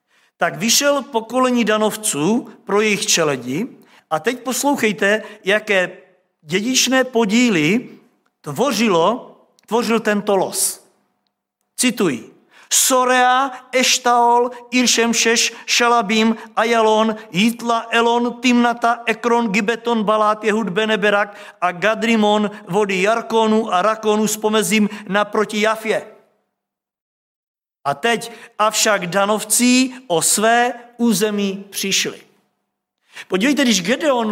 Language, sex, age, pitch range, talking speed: Czech, male, 50-69, 210-245 Hz, 90 wpm